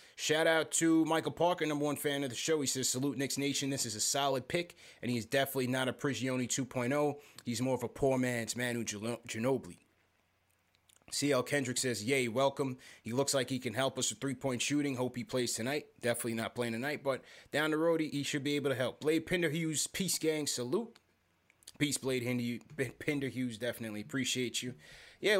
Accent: American